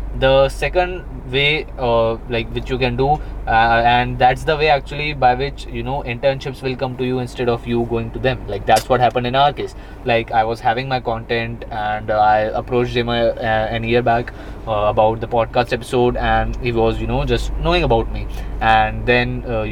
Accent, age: native, 20-39